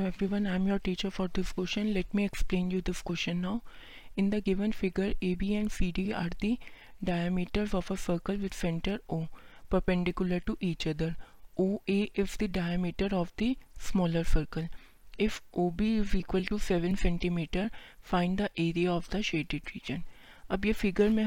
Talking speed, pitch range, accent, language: 170 wpm, 175-200 Hz, native, Hindi